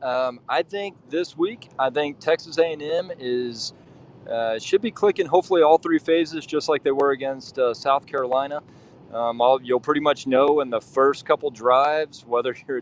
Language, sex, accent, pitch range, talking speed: English, male, American, 120-150 Hz, 170 wpm